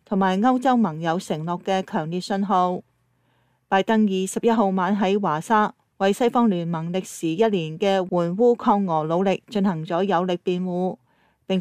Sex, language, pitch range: female, Chinese, 180-220 Hz